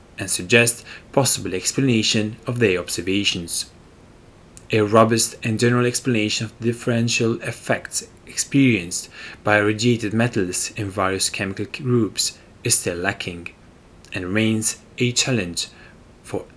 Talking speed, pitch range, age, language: 115 wpm, 95-120 Hz, 30-49, English